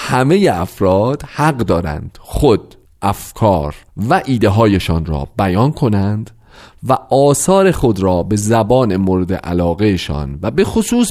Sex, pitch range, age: male, 100-155 Hz, 40-59